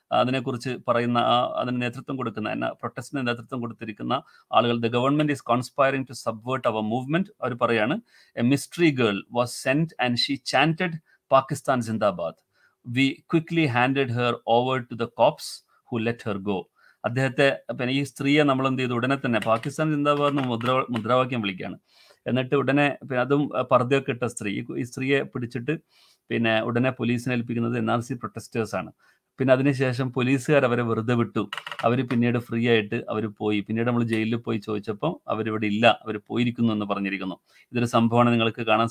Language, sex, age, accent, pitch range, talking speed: Malayalam, male, 30-49, native, 115-140 Hz, 125 wpm